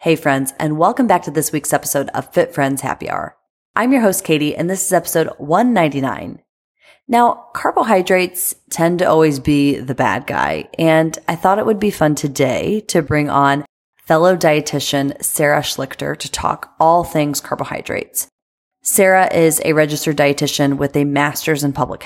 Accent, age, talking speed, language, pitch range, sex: American, 30-49, 170 wpm, English, 145-185 Hz, female